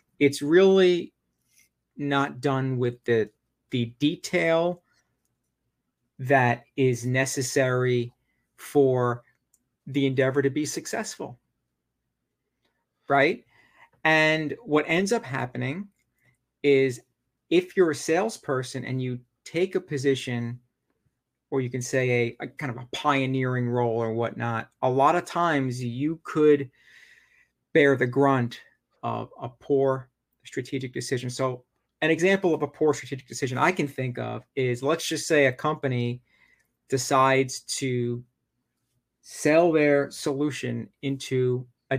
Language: English